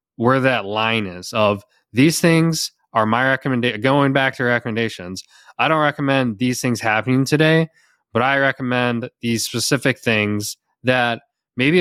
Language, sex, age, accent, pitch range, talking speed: English, male, 20-39, American, 105-130 Hz, 145 wpm